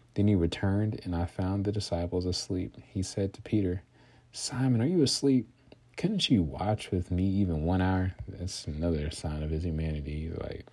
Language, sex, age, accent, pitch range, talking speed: English, male, 30-49, American, 85-120 Hz, 180 wpm